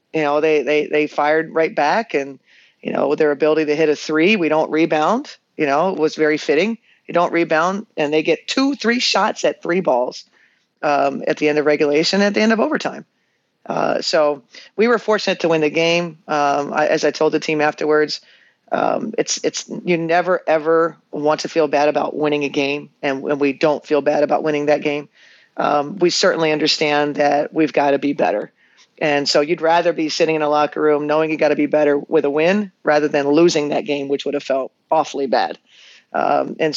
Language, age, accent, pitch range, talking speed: English, 40-59, American, 145-165 Hz, 210 wpm